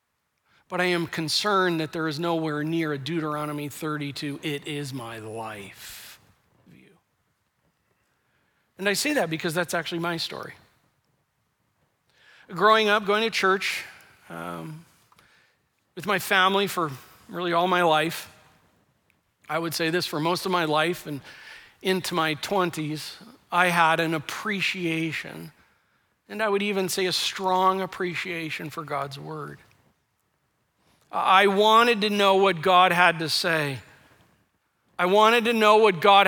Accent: American